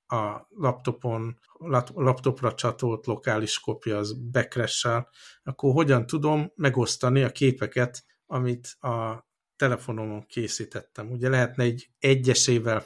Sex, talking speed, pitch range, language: male, 105 wpm, 110-130 Hz, Hungarian